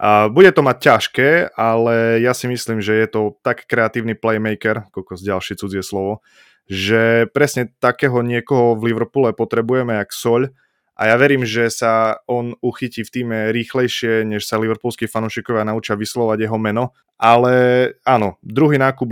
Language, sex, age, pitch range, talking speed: Slovak, male, 20-39, 105-120 Hz, 160 wpm